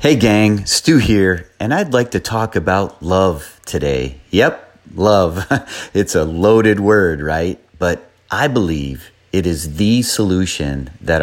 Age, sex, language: 30-49, male, English